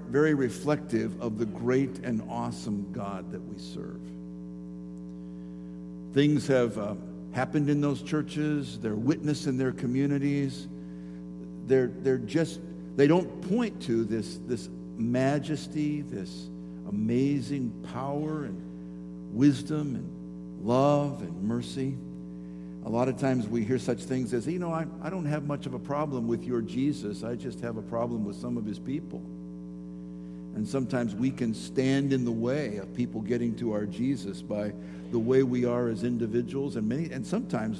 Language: English